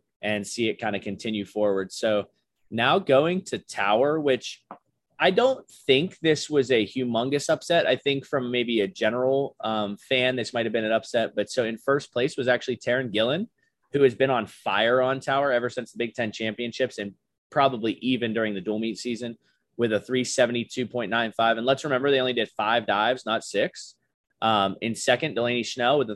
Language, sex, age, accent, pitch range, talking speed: English, male, 20-39, American, 115-140 Hz, 195 wpm